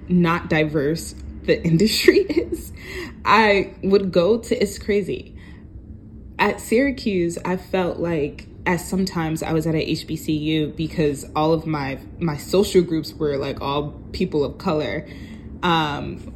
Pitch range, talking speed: 150-185 Hz, 135 wpm